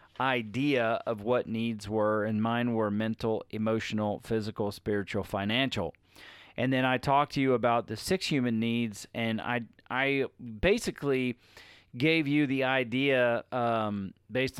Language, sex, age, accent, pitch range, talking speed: English, male, 40-59, American, 100-120 Hz, 140 wpm